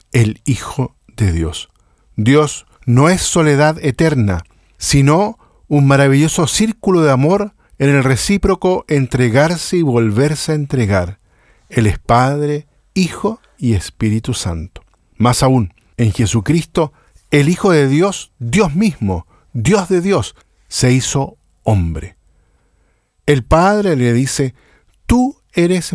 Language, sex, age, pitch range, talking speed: Spanish, male, 50-69, 110-155 Hz, 120 wpm